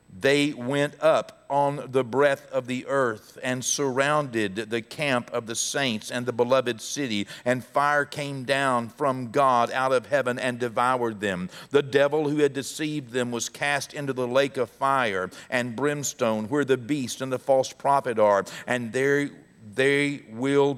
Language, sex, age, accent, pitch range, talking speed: English, male, 50-69, American, 120-145 Hz, 170 wpm